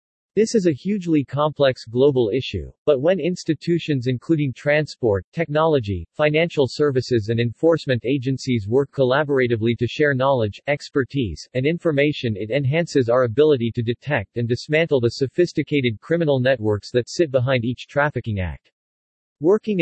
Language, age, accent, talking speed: English, 40-59, American, 135 wpm